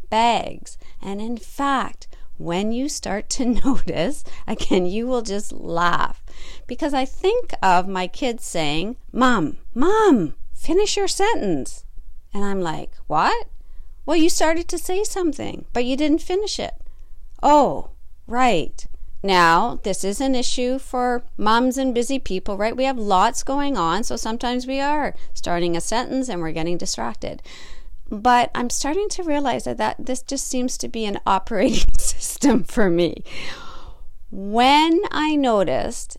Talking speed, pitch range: 150 wpm, 190-285 Hz